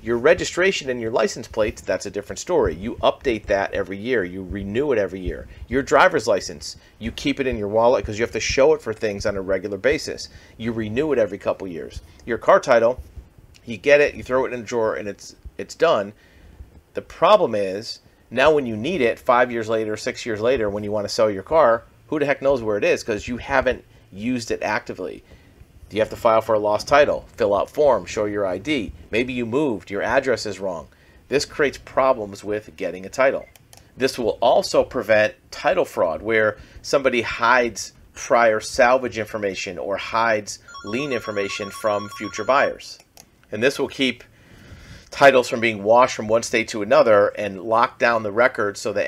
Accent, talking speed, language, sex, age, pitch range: American, 200 wpm, English, male, 40-59, 100-125 Hz